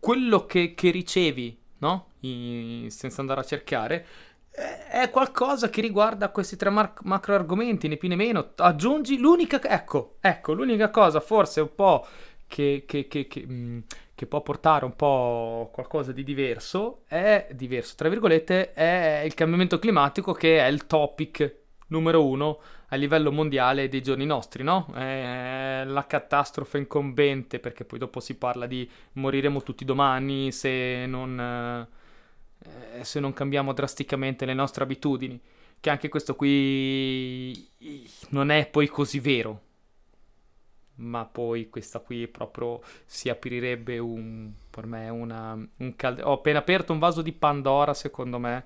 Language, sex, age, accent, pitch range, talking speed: Italian, male, 20-39, native, 125-160 Hz, 150 wpm